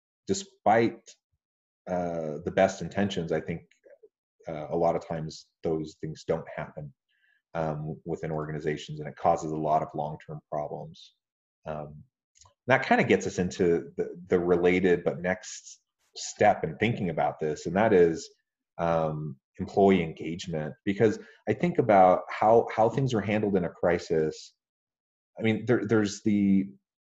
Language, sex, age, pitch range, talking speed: English, male, 30-49, 80-100 Hz, 145 wpm